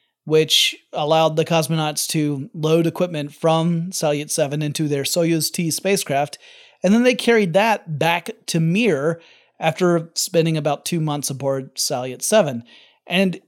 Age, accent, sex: 30-49, American, male